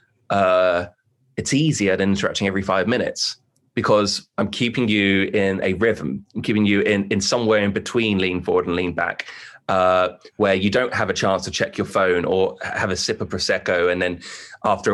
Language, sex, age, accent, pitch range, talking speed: English, male, 20-39, British, 95-110 Hz, 195 wpm